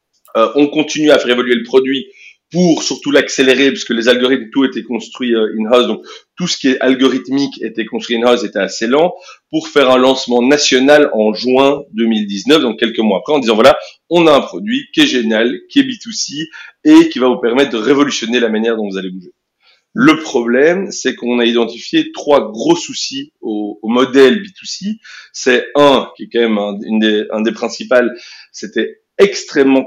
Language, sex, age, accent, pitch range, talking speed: French, male, 40-59, French, 120-180 Hz, 195 wpm